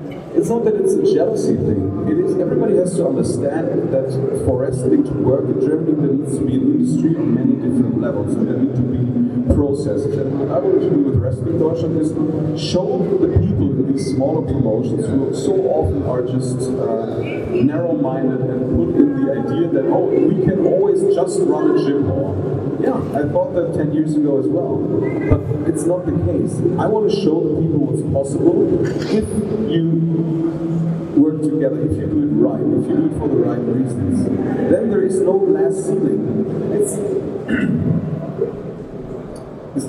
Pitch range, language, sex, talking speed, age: 130-165 Hz, English, male, 185 wpm, 30-49